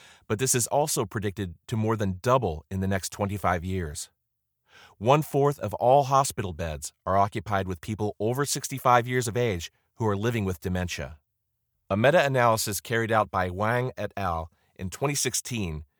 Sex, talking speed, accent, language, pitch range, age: male, 160 wpm, American, English, 95-125 Hz, 40-59